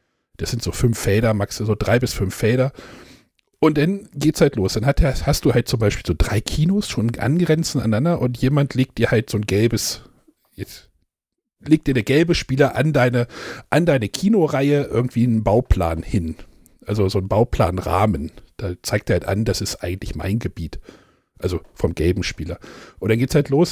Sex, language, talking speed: male, German, 190 wpm